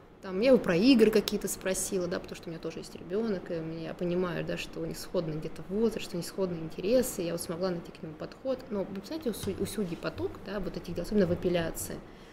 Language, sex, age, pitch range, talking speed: Russian, female, 20-39, 175-220 Hz, 225 wpm